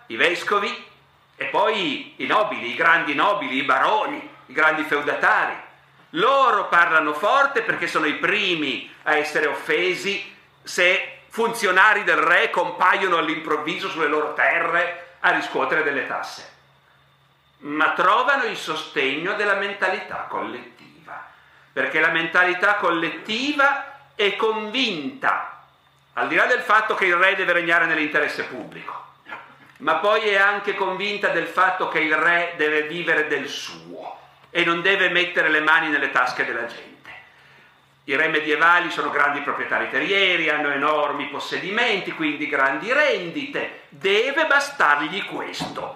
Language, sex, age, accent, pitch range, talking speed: Italian, male, 50-69, native, 160-205 Hz, 135 wpm